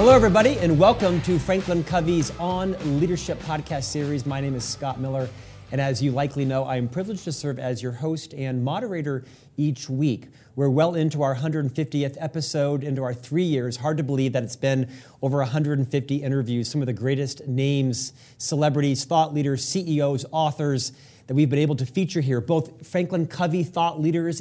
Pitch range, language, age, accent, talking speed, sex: 135-165 Hz, English, 40-59, American, 180 wpm, male